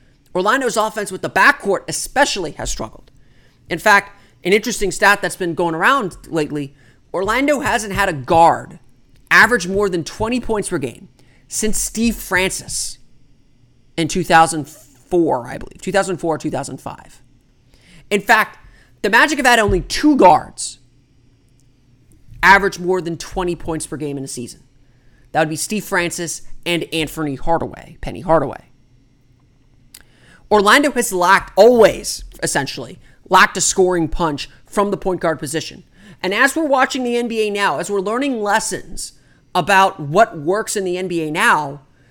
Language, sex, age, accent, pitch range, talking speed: English, male, 30-49, American, 135-205 Hz, 140 wpm